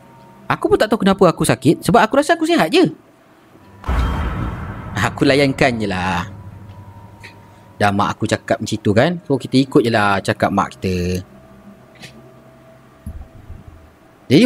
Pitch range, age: 100-160 Hz, 30-49